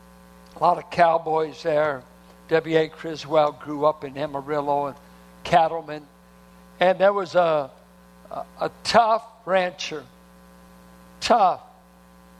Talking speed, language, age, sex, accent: 105 wpm, English, 60-79, male, American